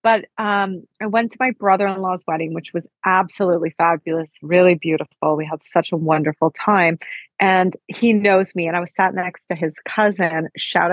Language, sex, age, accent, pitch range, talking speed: English, female, 30-49, American, 170-215 Hz, 180 wpm